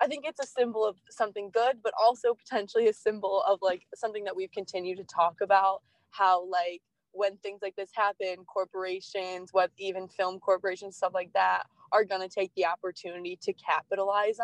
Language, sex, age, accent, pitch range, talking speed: English, female, 20-39, American, 185-210 Hz, 185 wpm